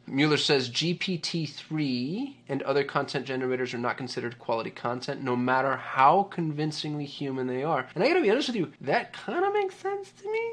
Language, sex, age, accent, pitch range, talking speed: English, male, 20-39, American, 125-155 Hz, 195 wpm